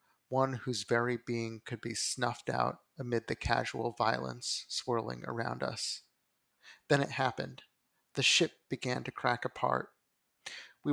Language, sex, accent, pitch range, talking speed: English, male, American, 115-130 Hz, 135 wpm